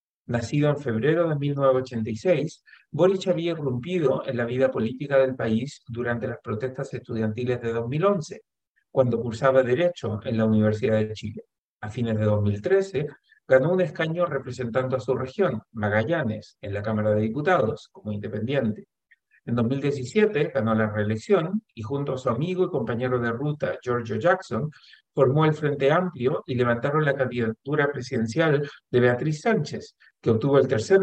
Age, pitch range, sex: 50-69, 110-150 Hz, male